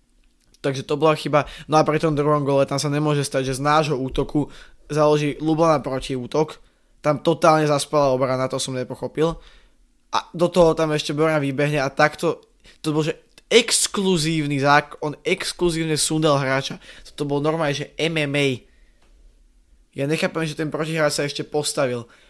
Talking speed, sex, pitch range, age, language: 160 wpm, male, 145-175 Hz, 20-39, Slovak